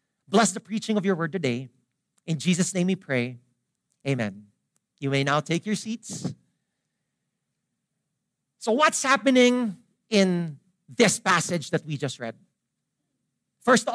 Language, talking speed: English, 130 wpm